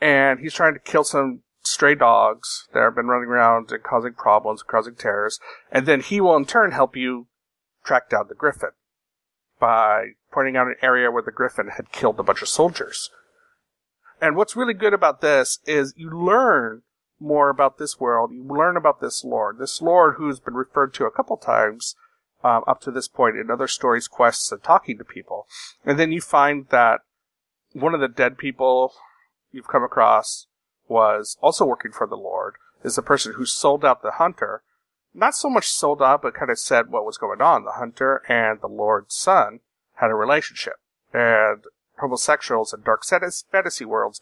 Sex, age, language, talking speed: male, 40-59, English, 190 wpm